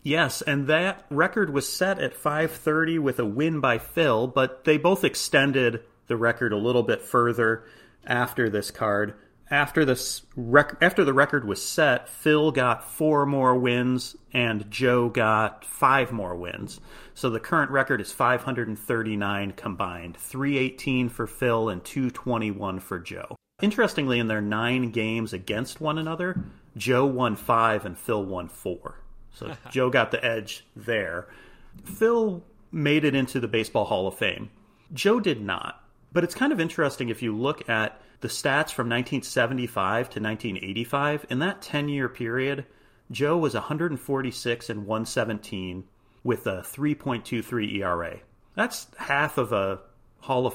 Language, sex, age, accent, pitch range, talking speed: English, male, 30-49, American, 110-140 Hz, 150 wpm